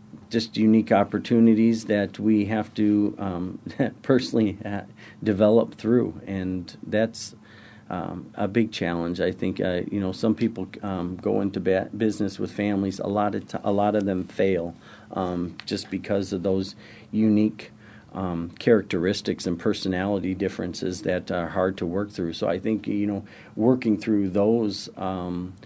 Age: 40-59